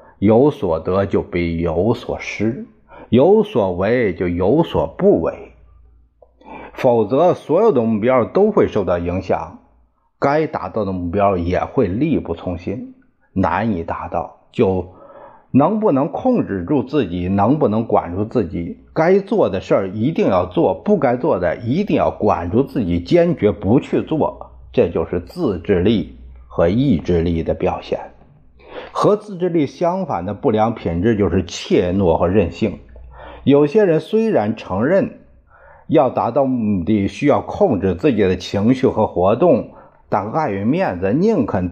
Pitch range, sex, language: 85-140 Hz, male, Chinese